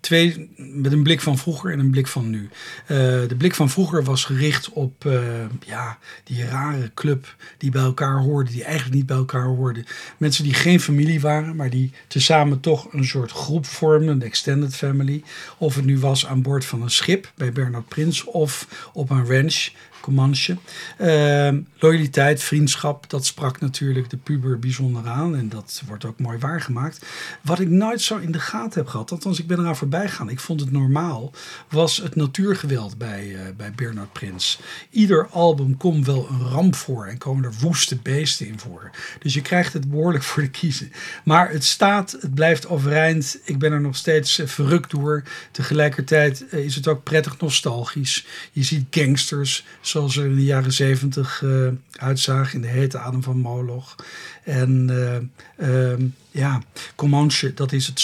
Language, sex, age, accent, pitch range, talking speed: Dutch, male, 50-69, Dutch, 130-155 Hz, 185 wpm